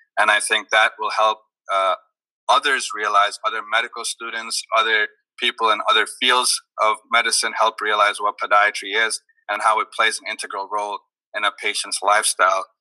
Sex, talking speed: male, 165 wpm